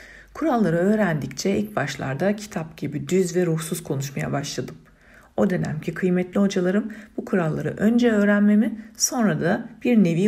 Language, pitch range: Turkish, 150-200 Hz